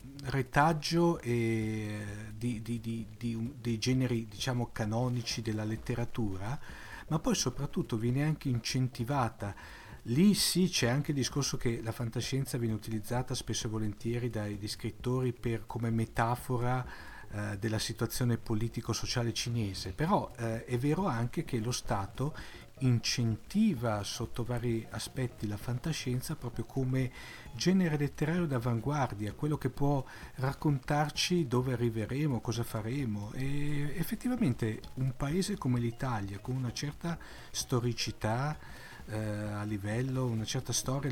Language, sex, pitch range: Italian, male, 115-145 Hz